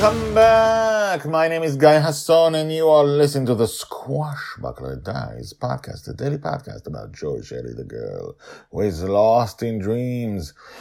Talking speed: 165 wpm